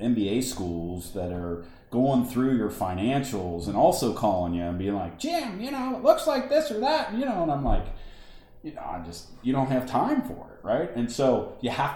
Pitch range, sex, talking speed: 85-115 Hz, male, 220 wpm